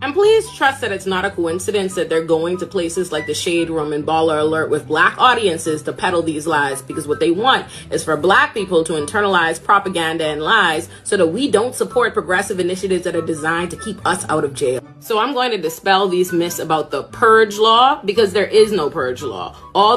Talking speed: 220 wpm